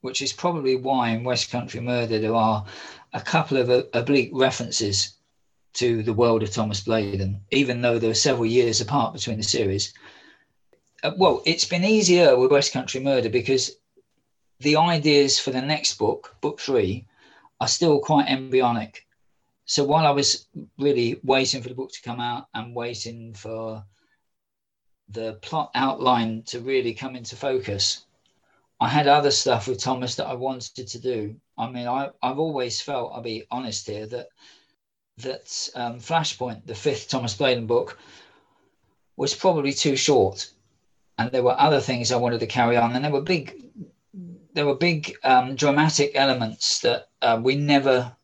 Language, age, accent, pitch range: English, 40-59, British, 115-140 Hz